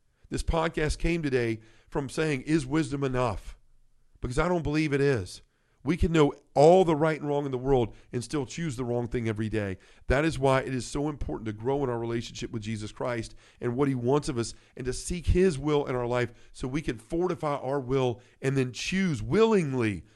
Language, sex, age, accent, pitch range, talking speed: English, male, 50-69, American, 115-150 Hz, 215 wpm